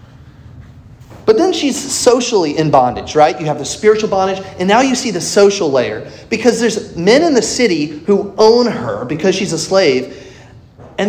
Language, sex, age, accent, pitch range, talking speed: English, male, 30-49, American, 160-240 Hz, 180 wpm